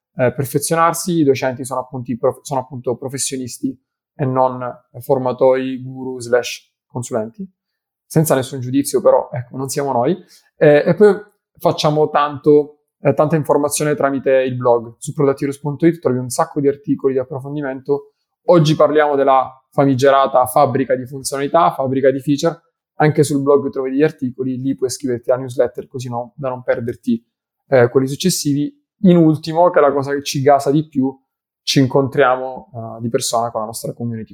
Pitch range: 130-155 Hz